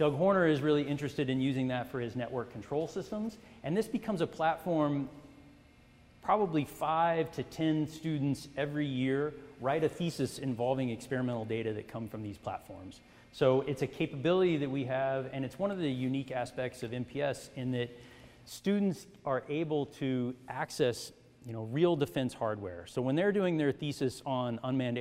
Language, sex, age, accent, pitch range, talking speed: English, male, 40-59, American, 120-150 Hz, 175 wpm